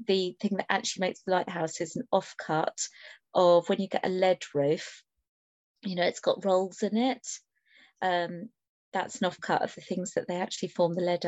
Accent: British